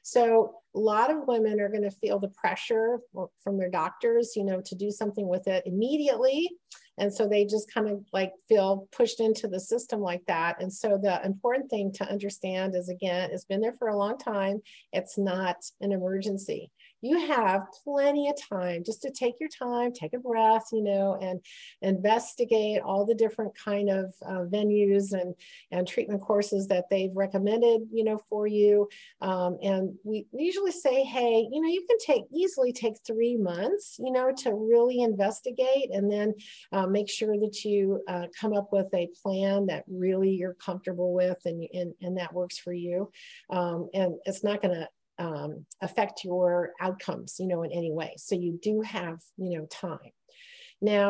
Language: English